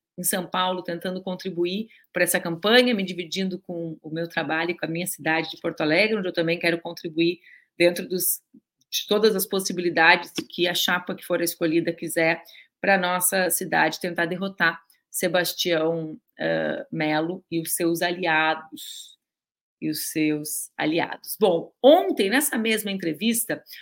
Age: 40-59